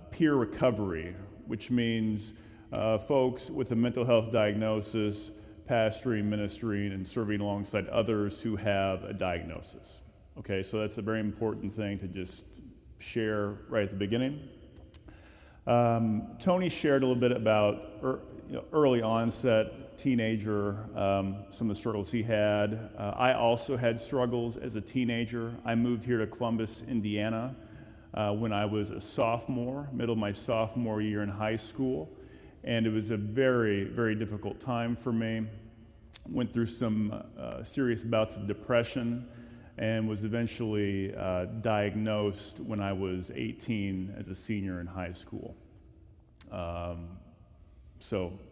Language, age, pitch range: English, 40-59, 100-115 Hz